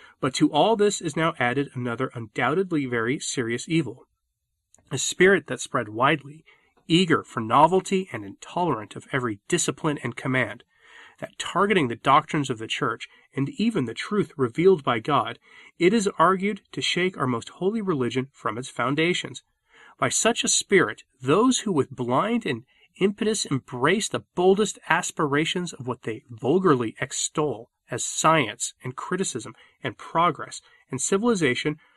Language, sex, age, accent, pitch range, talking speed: English, male, 30-49, American, 130-185 Hz, 150 wpm